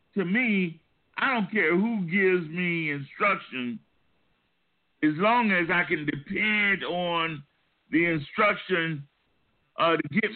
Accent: American